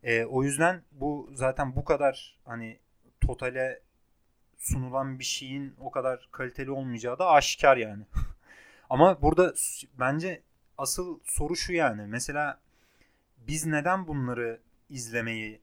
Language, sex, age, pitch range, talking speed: Turkish, male, 30-49, 120-160 Hz, 120 wpm